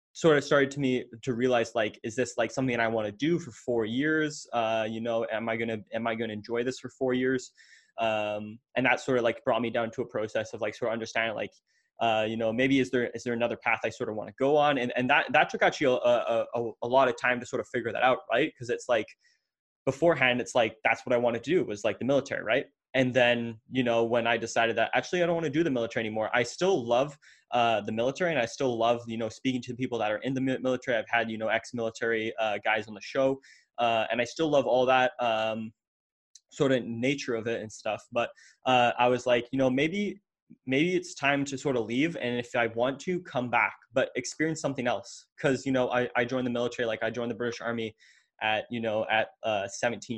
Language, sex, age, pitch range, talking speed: English, male, 20-39, 115-130 Hz, 260 wpm